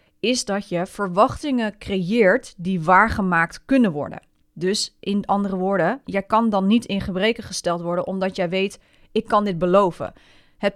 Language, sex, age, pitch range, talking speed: Dutch, female, 30-49, 185-230 Hz, 160 wpm